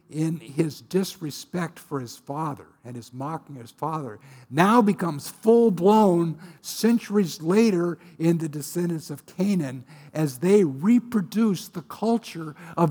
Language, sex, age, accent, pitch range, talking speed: English, male, 60-79, American, 140-190 Hz, 135 wpm